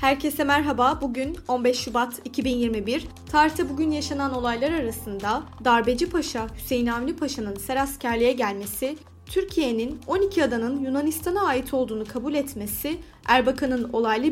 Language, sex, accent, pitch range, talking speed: Turkish, female, native, 220-295 Hz, 120 wpm